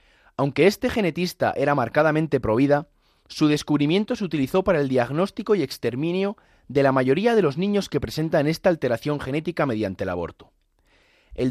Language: Spanish